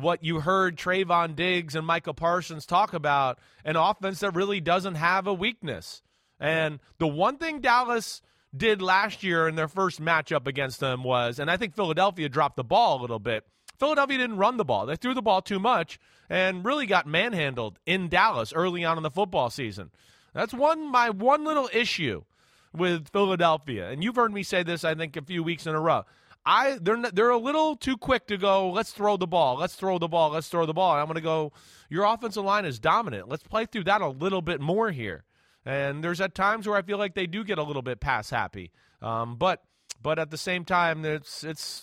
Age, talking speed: 30-49, 220 wpm